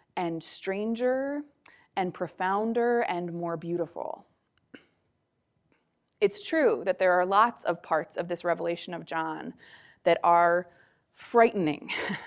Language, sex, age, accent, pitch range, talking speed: English, female, 20-39, American, 170-210 Hz, 110 wpm